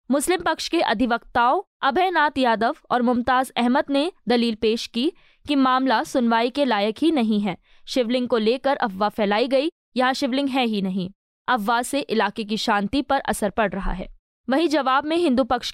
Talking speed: 180 wpm